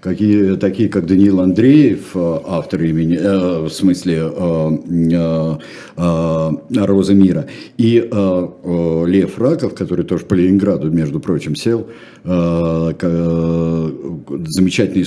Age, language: 50-69, Russian